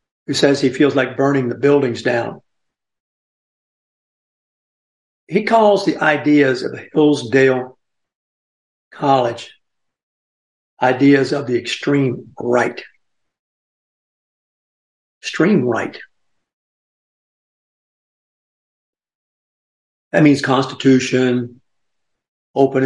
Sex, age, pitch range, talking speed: male, 60-79, 125-150 Hz, 70 wpm